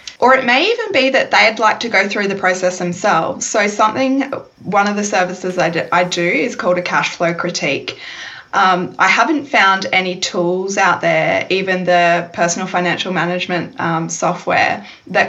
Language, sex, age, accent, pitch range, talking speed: English, female, 20-39, Australian, 180-225 Hz, 175 wpm